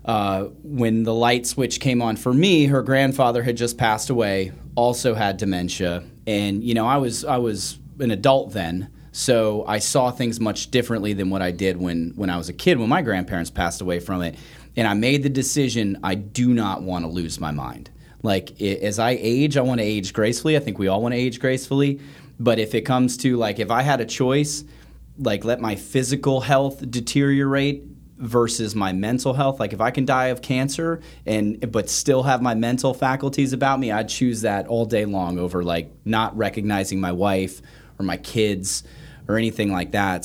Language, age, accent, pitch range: English, 30-49, American, 95-130 Hz